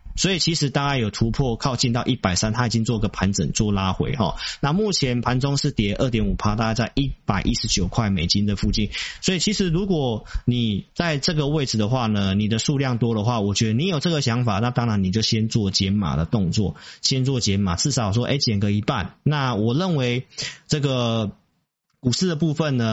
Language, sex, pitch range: Chinese, male, 105-140 Hz